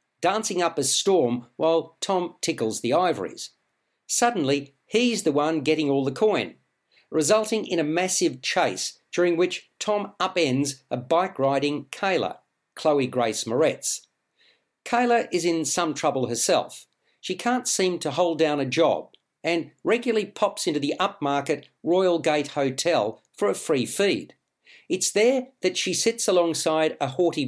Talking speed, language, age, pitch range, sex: 145 wpm, English, 50-69, 145-190 Hz, male